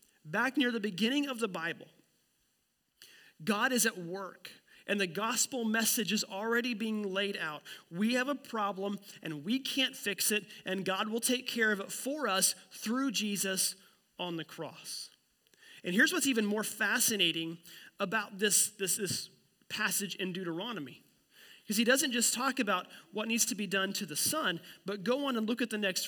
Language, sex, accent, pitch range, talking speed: English, male, American, 190-240 Hz, 180 wpm